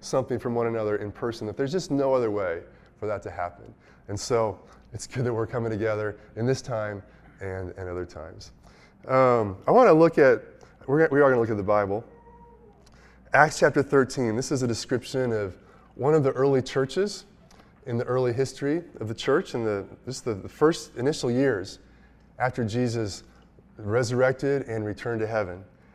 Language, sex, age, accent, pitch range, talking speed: English, male, 20-39, American, 110-155 Hz, 190 wpm